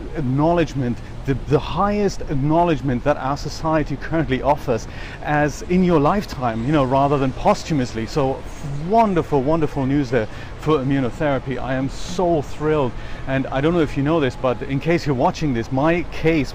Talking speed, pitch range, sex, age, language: 165 wpm, 130-155 Hz, male, 40-59, English